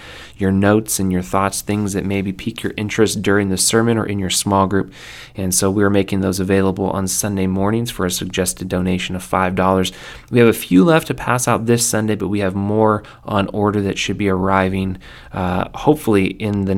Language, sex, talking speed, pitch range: English, male, 205 wpm, 95-115 Hz